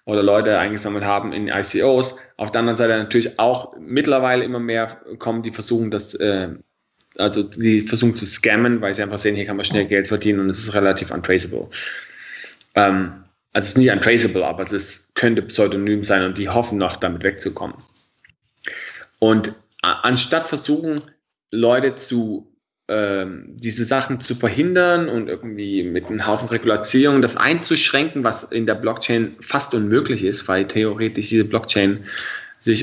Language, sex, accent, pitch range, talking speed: German, male, German, 105-125 Hz, 155 wpm